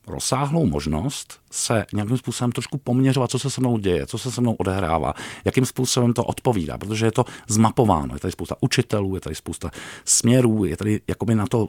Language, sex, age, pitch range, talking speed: Czech, male, 50-69, 90-125 Hz, 195 wpm